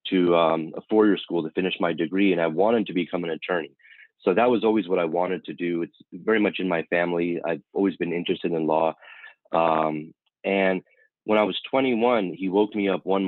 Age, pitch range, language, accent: 30-49, 85-105 Hz, English, American